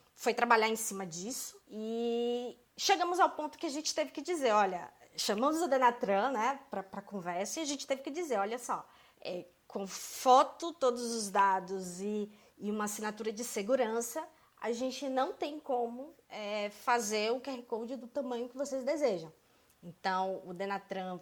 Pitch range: 215-295 Hz